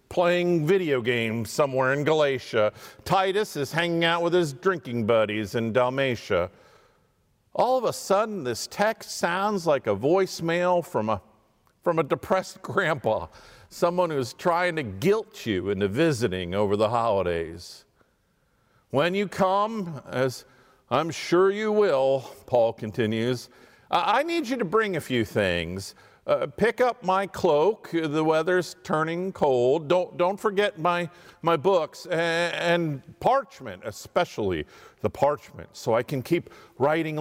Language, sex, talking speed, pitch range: English, male, 140 wpm, 120-185 Hz